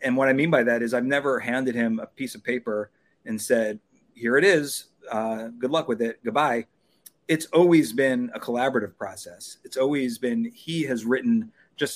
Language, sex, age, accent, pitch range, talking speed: English, male, 30-49, American, 115-150 Hz, 195 wpm